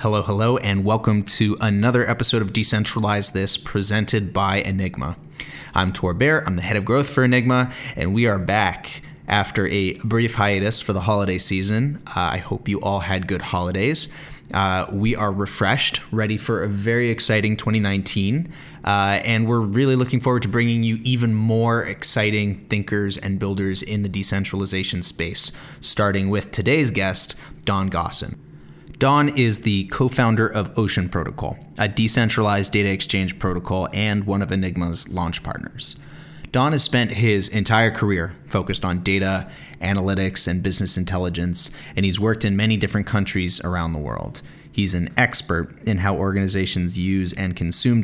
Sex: male